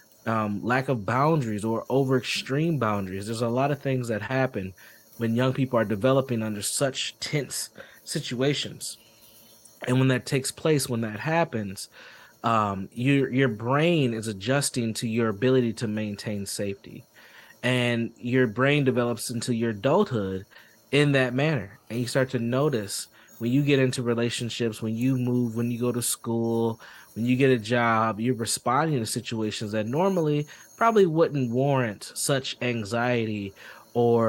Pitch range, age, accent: 110-135 Hz, 20-39, American